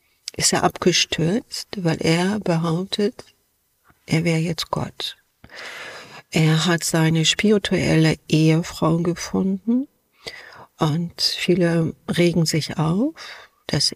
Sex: female